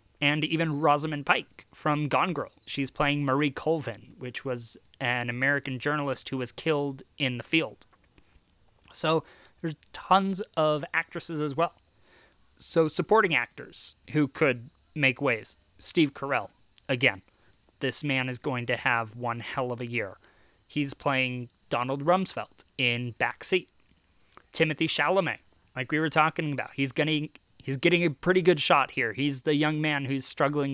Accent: American